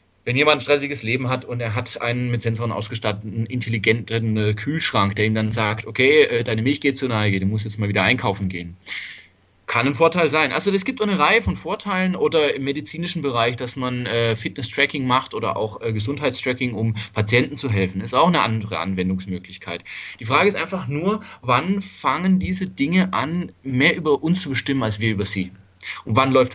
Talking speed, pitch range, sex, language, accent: 195 wpm, 105-140 Hz, male, German, German